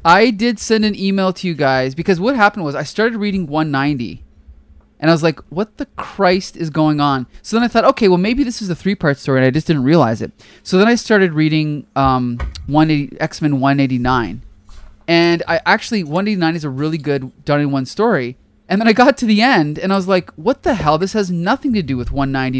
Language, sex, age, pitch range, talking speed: English, male, 20-39, 145-195 Hz, 235 wpm